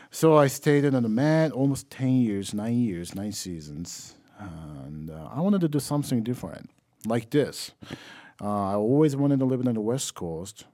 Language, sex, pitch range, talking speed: English, male, 90-120 Hz, 185 wpm